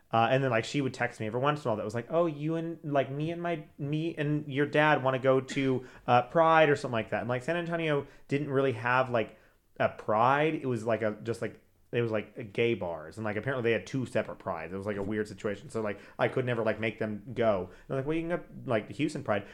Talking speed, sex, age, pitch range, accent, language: 285 wpm, male, 30-49, 110-135 Hz, American, English